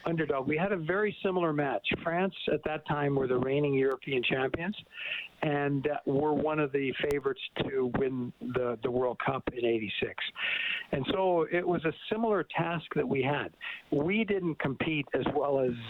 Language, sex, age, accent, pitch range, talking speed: English, male, 50-69, American, 130-165 Hz, 175 wpm